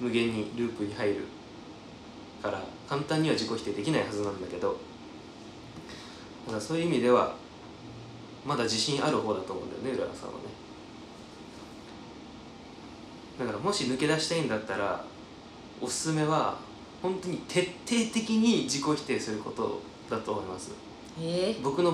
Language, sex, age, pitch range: Japanese, male, 20-39, 125-180 Hz